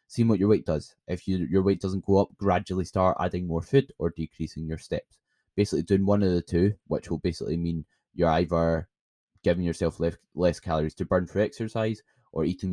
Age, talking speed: 10-29, 205 wpm